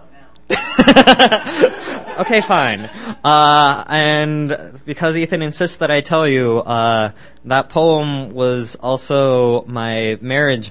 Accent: American